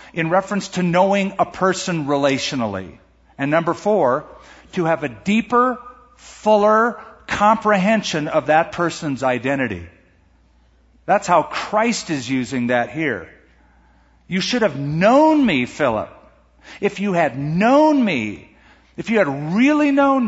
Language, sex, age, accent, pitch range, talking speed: English, male, 50-69, American, 130-205 Hz, 125 wpm